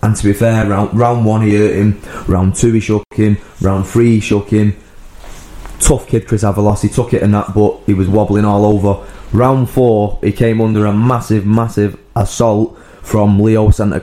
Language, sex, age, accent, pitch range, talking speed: English, male, 20-39, British, 100-120 Hz, 200 wpm